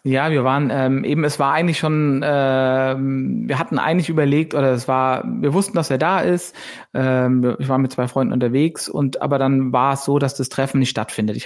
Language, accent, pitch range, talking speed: German, German, 130-150 Hz, 225 wpm